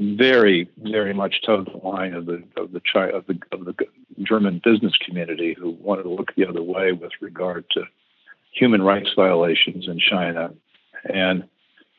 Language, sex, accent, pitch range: English, male, American, 95-105 Hz